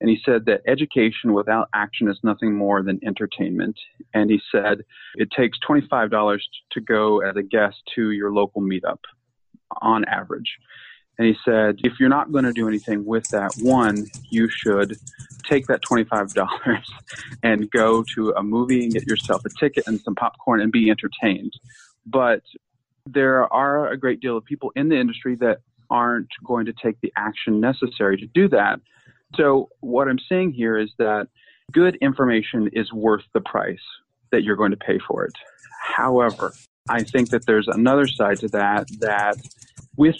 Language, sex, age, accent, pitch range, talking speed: English, male, 30-49, American, 105-130 Hz, 175 wpm